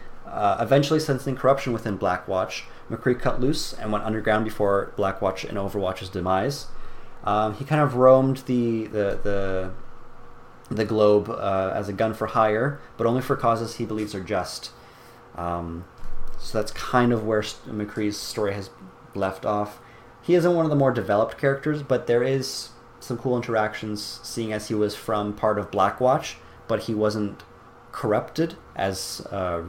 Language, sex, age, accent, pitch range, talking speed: English, male, 30-49, American, 100-130 Hz, 160 wpm